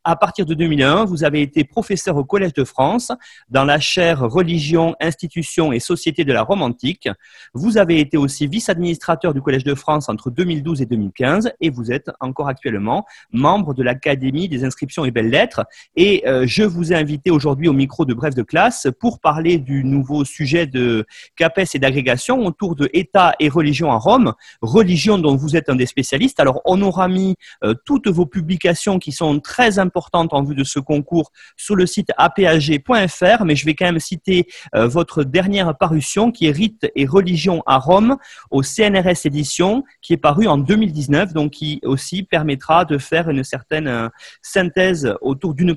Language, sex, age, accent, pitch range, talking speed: French, male, 30-49, French, 140-185 Hz, 185 wpm